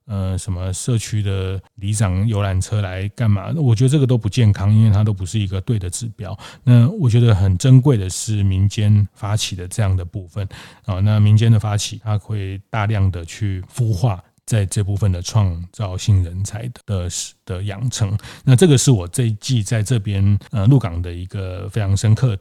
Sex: male